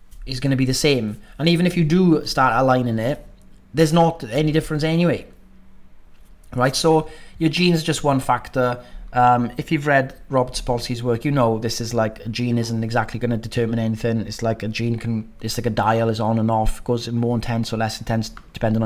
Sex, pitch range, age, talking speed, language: male, 115-140 Hz, 30-49, 215 wpm, English